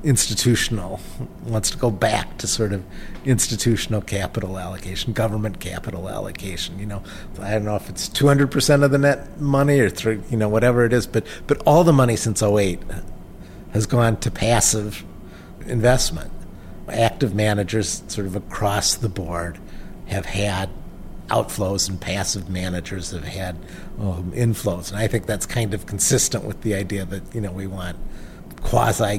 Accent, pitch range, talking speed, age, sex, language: American, 95-120 Hz, 160 wpm, 50-69, male, English